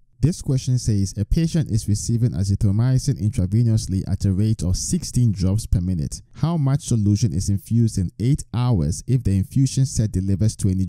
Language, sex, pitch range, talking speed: English, male, 95-120 Hz, 170 wpm